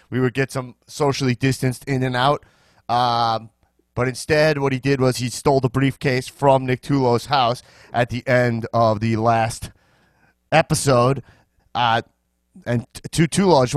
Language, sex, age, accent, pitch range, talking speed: English, male, 30-49, American, 115-145 Hz, 160 wpm